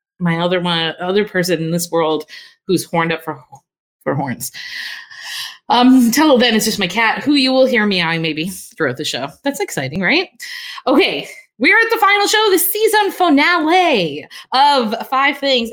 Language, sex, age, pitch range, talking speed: English, female, 20-39, 175-280 Hz, 170 wpm